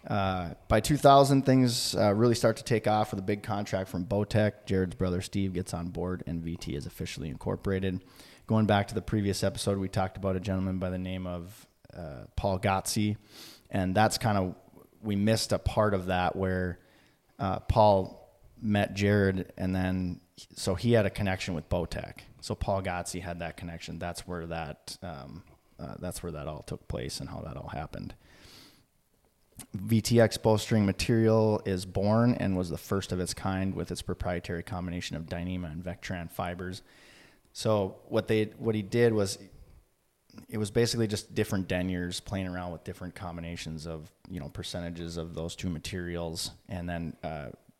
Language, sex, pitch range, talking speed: English, male, 85-105 Hz, 175 wpm